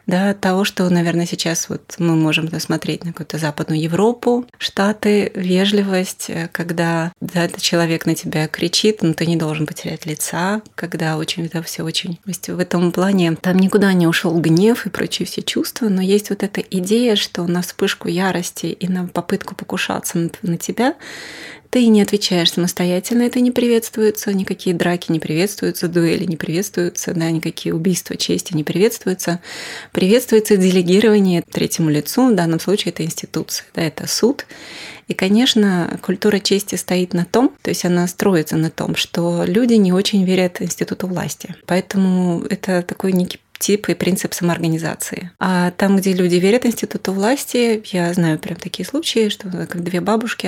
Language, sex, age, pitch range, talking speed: Russian, female, 30-49, 170-205 Hz, 170 wpm